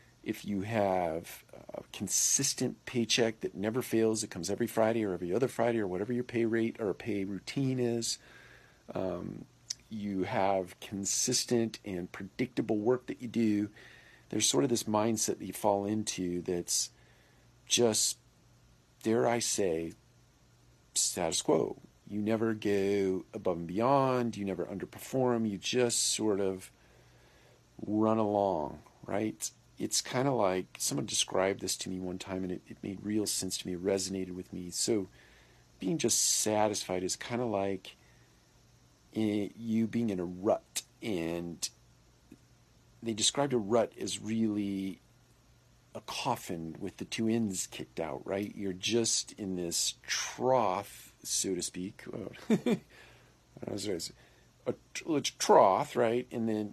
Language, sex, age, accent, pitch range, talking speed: English, male, 50-69, American, 95-115 Hz, 145 wpm